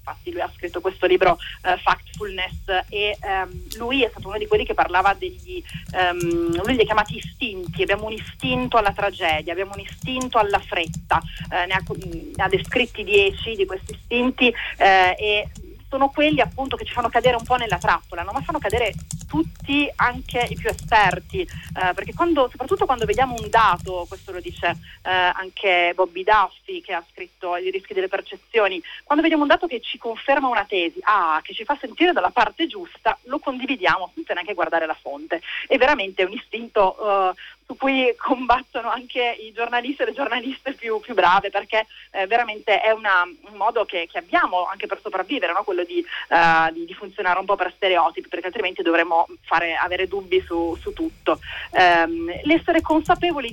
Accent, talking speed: native, 185 wpm